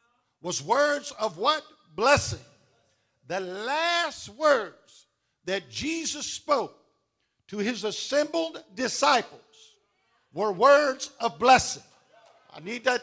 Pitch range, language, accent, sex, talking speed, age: 220-310 Hz, English, American, male, 100 wpm, 50-69